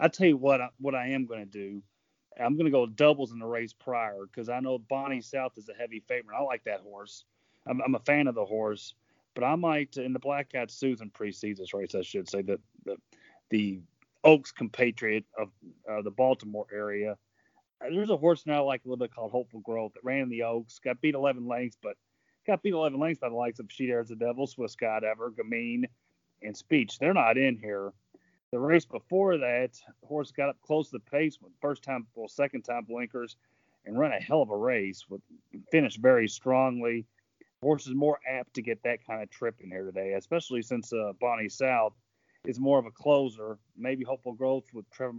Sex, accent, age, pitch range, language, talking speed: male, American, 30-49, 115-145 Hz, English, 220 wpm